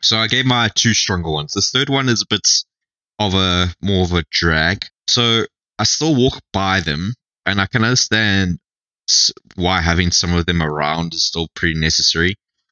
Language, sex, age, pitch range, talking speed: English, male, 20-39, 85-105 Hz, 175 wpm